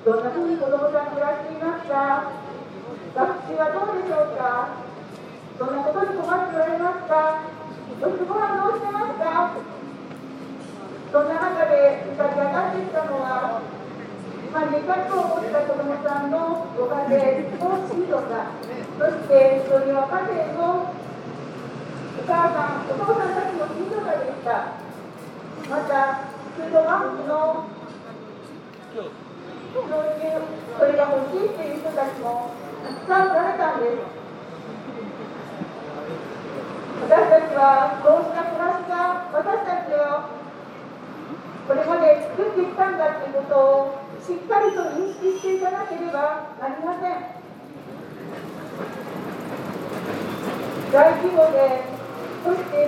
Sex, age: female, 40-59